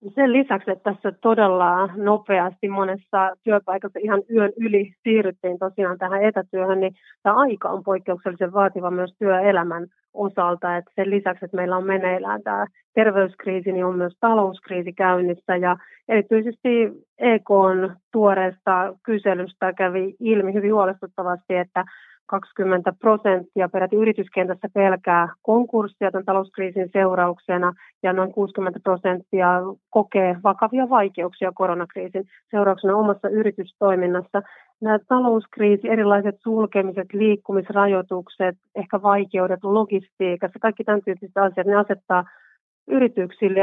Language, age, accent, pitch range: Finnish, 30-49, native, 185-210 Hz